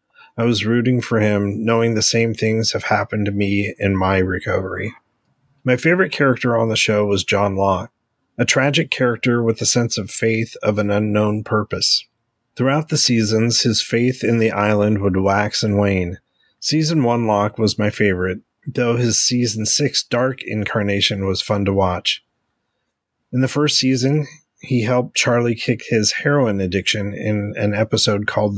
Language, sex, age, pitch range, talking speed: English, male, 30-49, 105-120 Hz, 170 wpm